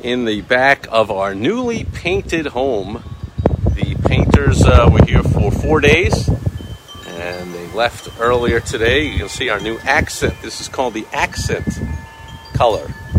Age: 50-69